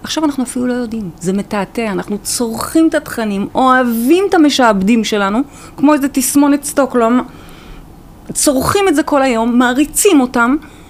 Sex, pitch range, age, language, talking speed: female, 185-275 Hz, 30-49, Hebrew, 145 wpm